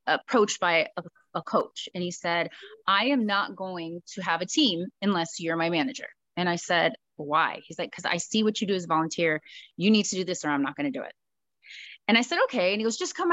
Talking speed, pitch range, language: 250 wpm, 175-220 Hz, English